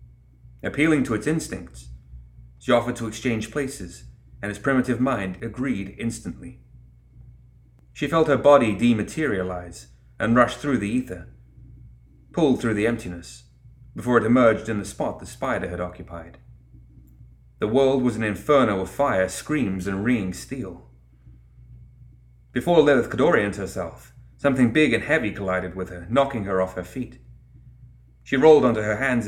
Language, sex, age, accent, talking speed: English, male, 30-49, British, 145 wpm